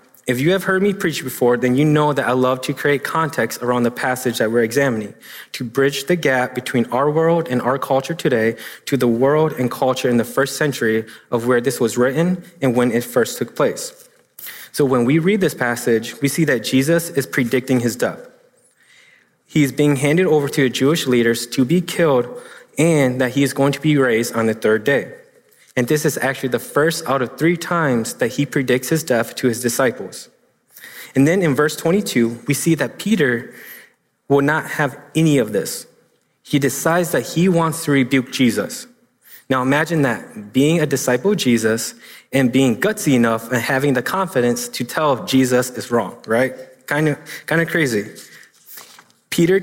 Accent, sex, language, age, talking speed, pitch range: American, male, English, 20-39, 190 wpm, 125-160 Hz